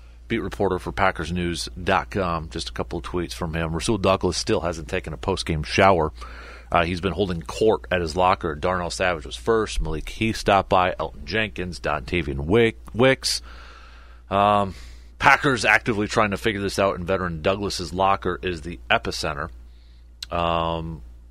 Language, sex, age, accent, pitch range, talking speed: English, male, 30-49, American, 80-100 Hz, 160 wpm